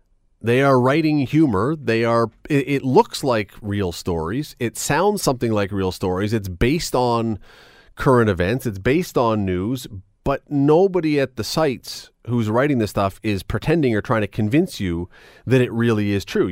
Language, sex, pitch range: English, male, 105-135 Hz